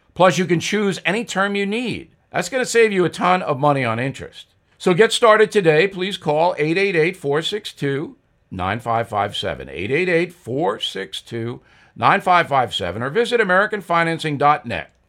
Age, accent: 60-79, American